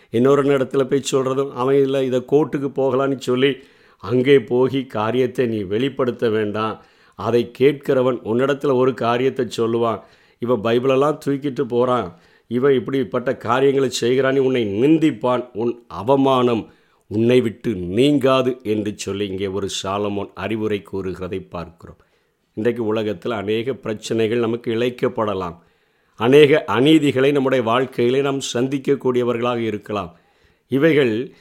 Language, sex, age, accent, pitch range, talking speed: Tamil, male, 50-69, native, 115-140 Hz, 115 wpm